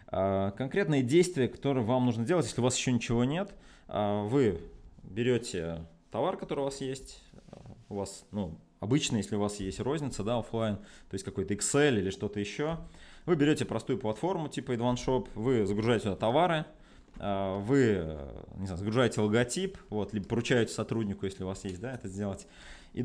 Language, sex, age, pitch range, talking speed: Russian, male, 20-39, 100-140 Hz, 170 wpm